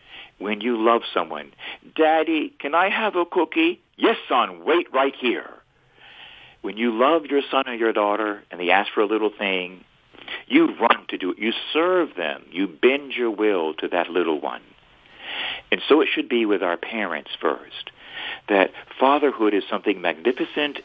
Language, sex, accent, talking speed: English, male, American, 175 wpm